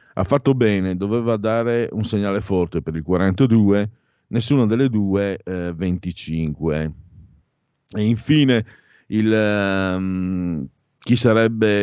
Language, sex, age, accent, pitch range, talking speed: Italian, male, 50-69, native, 85-115 Hz, 110 wpm